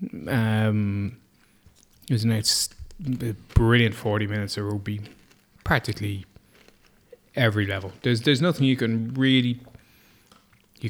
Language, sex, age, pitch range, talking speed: English, male, 20-39, 110-125 Hz, 115 wpm